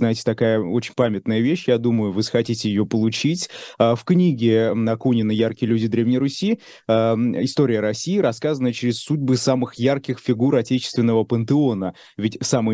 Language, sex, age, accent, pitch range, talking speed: Russian, male, 20-39, native, 110-130 Hz, 140 wpm